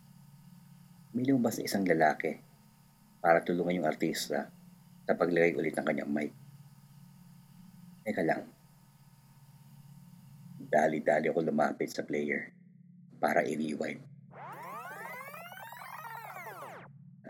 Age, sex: 50-69, male